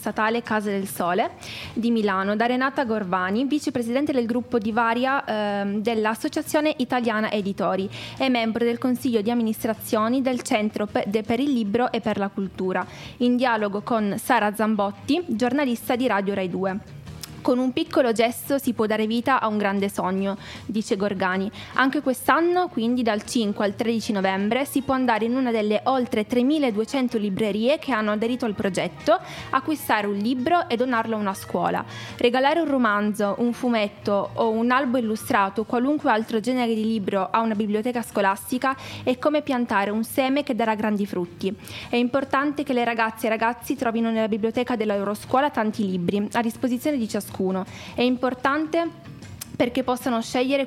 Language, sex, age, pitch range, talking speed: Italian, female, 20-39, 215-260 Hz, 165 wpm